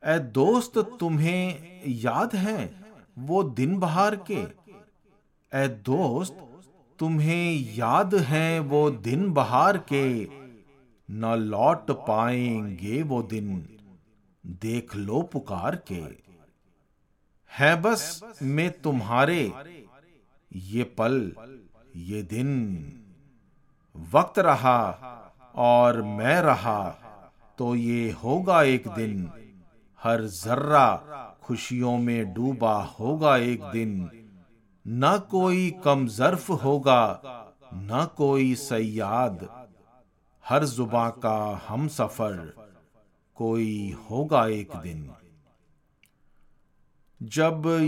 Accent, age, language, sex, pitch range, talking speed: native, 40-59, Hindi, male, 110-145 Hz, 90 wpm